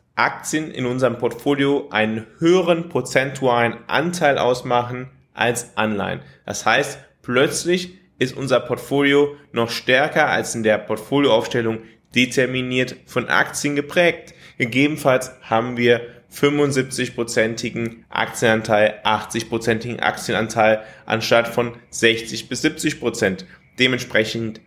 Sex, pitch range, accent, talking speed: male, 115-145 Hz, German, 100 wpm